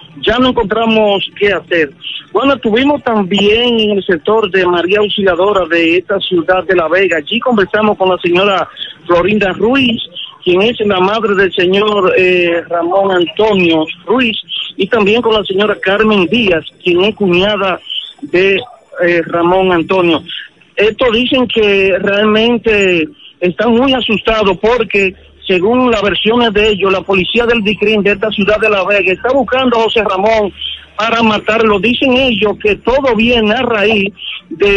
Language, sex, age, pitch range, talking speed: Spanish, male, 50-69, 190-225 Hz, 155 wpm